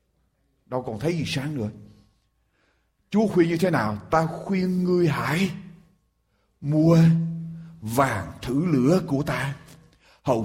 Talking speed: 125 wpm